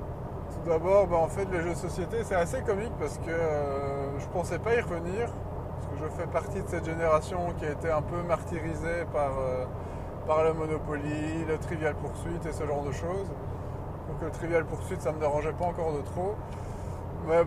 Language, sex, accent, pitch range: French, male, French, 100-155 Hz